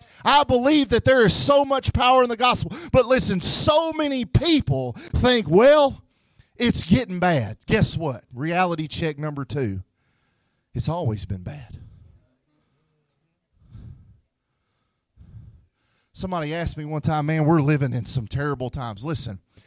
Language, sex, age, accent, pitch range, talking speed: English, male, 40-59, American, 115-155 Hz, 135 wpm